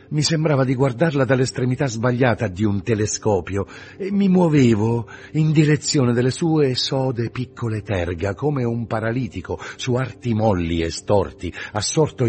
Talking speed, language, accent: 135 wpm, Italian, native